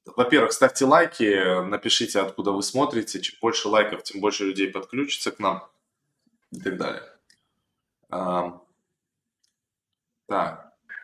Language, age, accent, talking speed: Russian, 20-39, native, 115 wpm